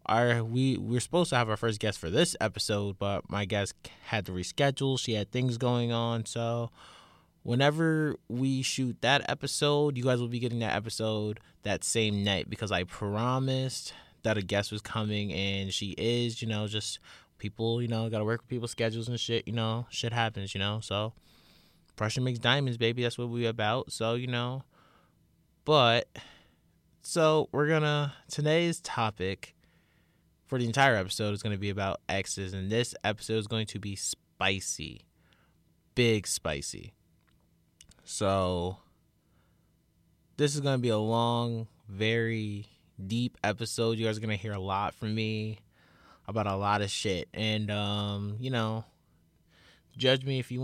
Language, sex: English, male